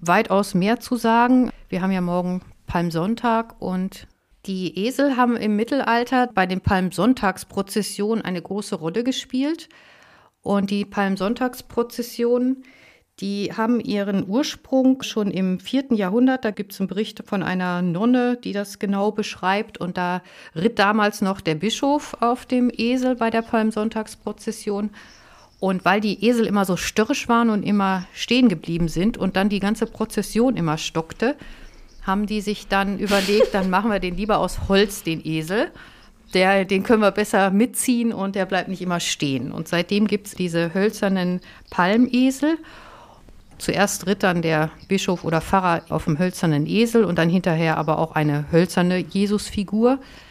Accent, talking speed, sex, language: German, 155 wpm, female, German